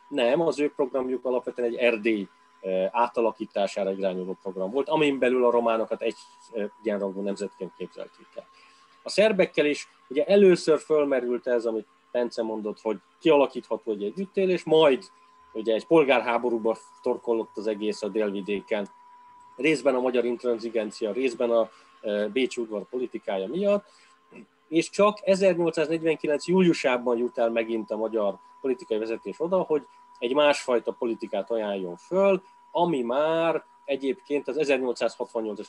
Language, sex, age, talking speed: Hungarian, male, 30-49, 130 wpm